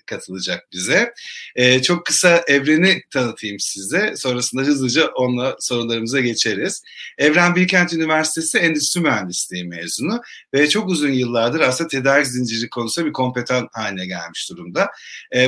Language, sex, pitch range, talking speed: Turkish, male, 120-160 Hz, 130 wpm